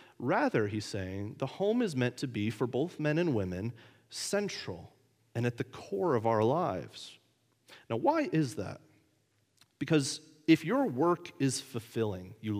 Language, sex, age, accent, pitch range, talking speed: English, male, 30-49, American, 105-135 Hz, 155 wpm